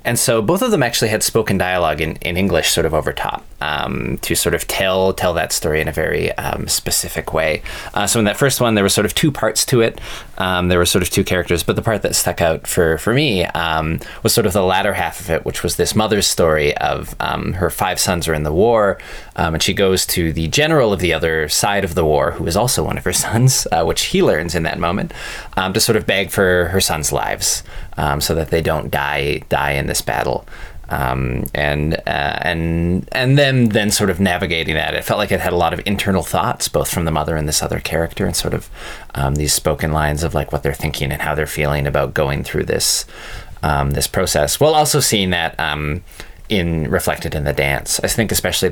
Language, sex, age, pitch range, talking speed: English, male, 20-39, 75-100 Hz, 240 wpm